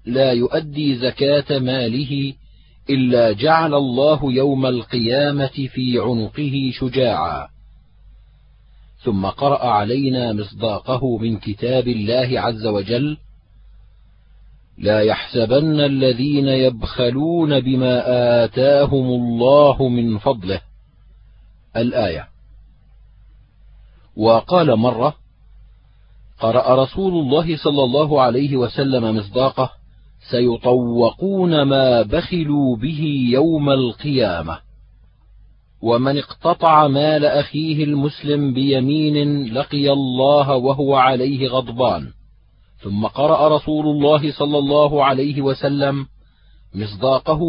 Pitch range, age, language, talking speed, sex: 115-145 Hz, 40-59, Arabic, 85 wpm, male